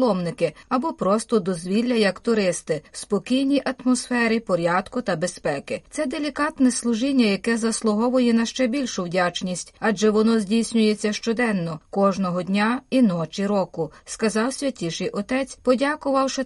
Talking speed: 120 wpm